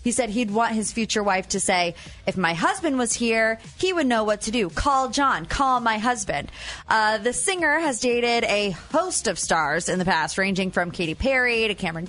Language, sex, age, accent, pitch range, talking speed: English, female, 20-39, American, 195-250 Hz, 215 wpm